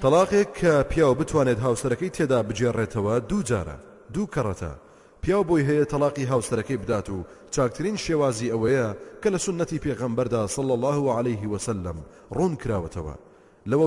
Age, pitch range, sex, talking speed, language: 30-49, 115-155 Hz, male, 150 wpm, Arabic